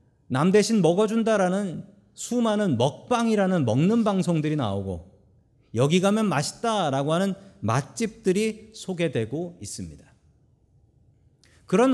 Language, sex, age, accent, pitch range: Korean, male, 40-59, native, 125-195 Hz